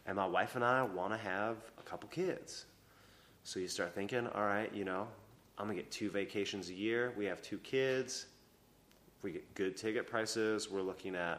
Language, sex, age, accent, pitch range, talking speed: English, male, 30-49, American, 95-110 Hz, 205 wpm